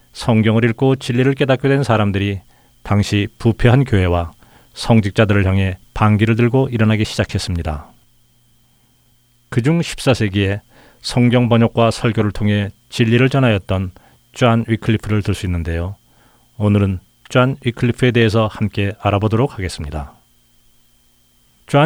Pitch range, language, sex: 100-125 Hz, Korean, male